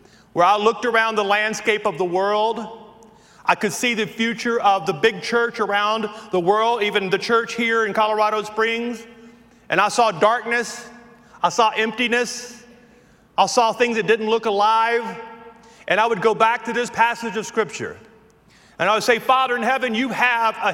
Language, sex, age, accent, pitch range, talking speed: English, male, 40-59, American, 215-250 Hz, 180 wpm